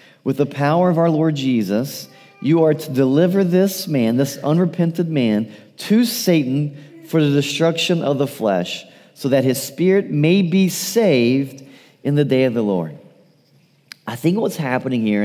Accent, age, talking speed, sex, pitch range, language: American, 40-59, 165 wpm, male, 130-165 Hz, English